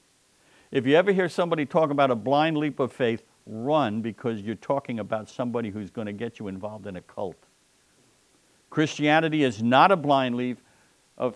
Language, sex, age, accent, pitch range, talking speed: English, male, 60-79, American, 115-150 Hz, 180 wpm